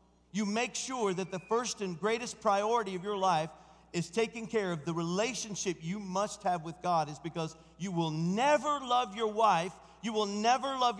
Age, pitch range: 50-69, 150-210 Hz